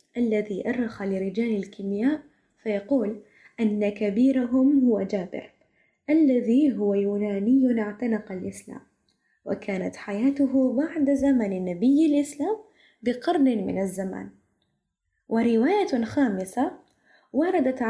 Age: 20-39